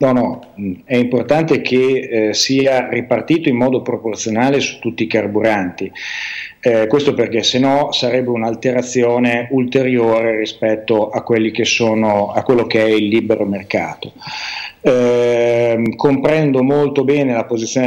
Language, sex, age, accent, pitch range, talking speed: Italian, male, 40-59, native, 110-130 Hz, 140 wpm